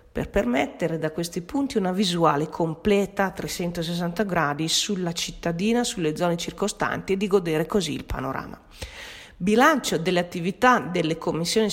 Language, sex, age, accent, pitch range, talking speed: Italian, female, 40-59, native, 165-210 Hz, 140 wpm